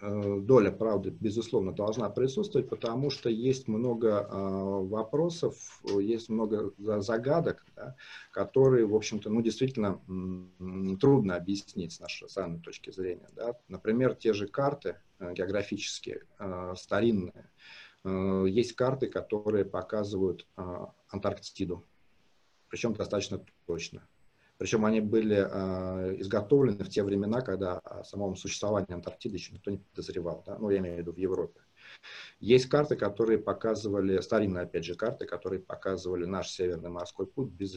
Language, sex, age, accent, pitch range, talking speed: Russian, male, 40-59, native, 95-110 Hz, 125 wpm